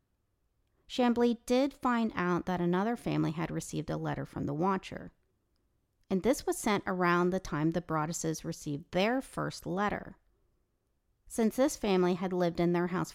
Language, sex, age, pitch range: English, female, 40-59, 160-215 Hz